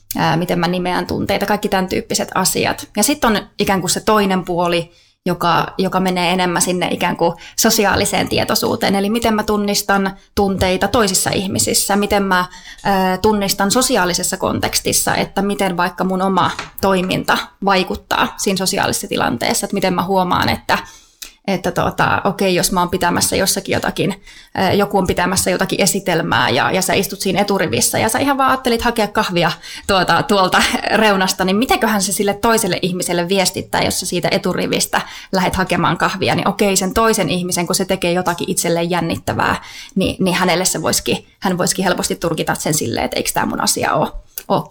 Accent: native